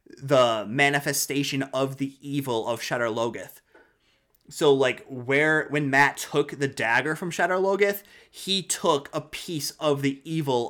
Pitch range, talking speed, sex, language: 125-150 Hz, 145 wpm, male, English